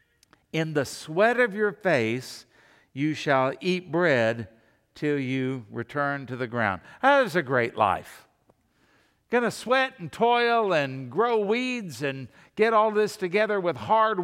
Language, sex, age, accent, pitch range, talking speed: English, male, 60-79, American, 135-190 Hz, 150 wpm